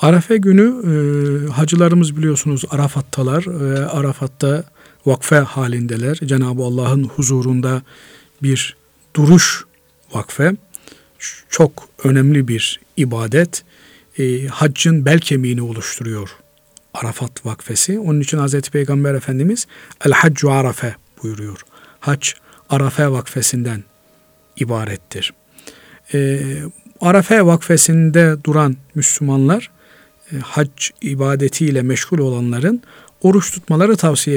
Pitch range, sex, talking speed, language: 125-155 Hz, male, 90 wpm, Turkish